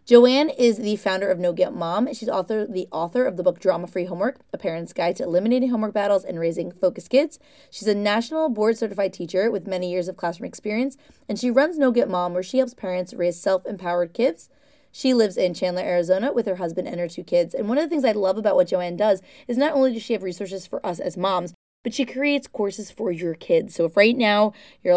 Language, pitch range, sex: English, 185-245 Hz, female